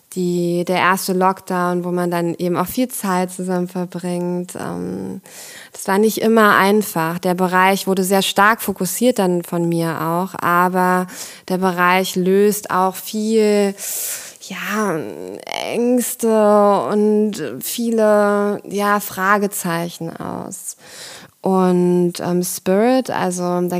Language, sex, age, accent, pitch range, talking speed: German, female, 20-39, German, 175-205 Hz, 110 wpm